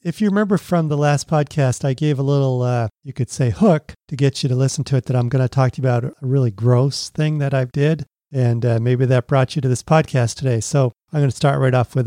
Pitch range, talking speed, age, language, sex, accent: 130-160 Hz, 280 wpm, 40-59, English, male, American